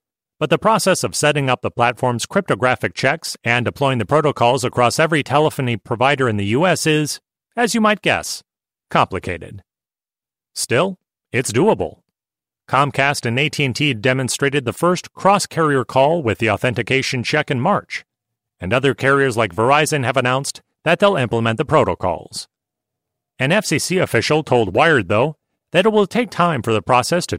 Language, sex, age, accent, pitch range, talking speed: English, male, 40-59, American, 120-155 Hz, 155 wpm